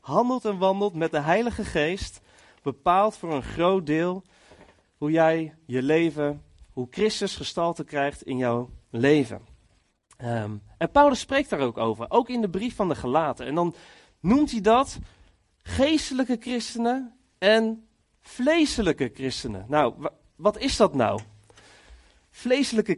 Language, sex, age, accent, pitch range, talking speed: Dutch, male, 30-49, Dutch, 145-225 Hz, 140 wpm